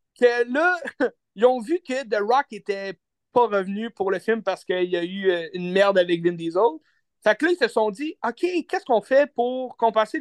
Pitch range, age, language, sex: 195-255 Hz, 30-49, French, male